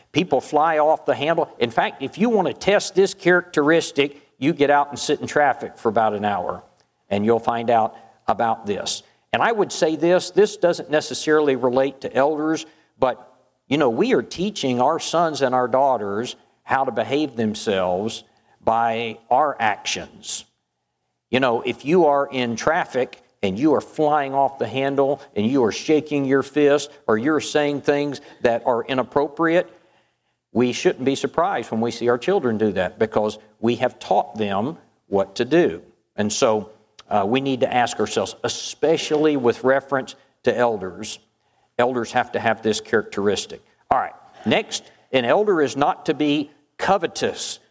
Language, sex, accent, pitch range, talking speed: English, male, American, 120-155 Hz, 170 wpm